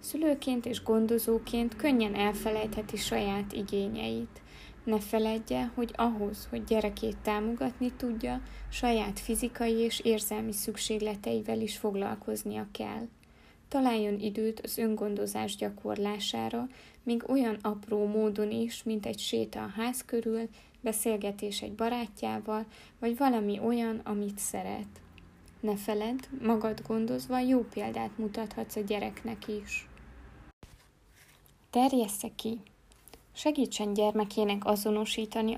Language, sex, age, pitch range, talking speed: Hungarian, female, 20-39, 205-230 Hz, 105 wpm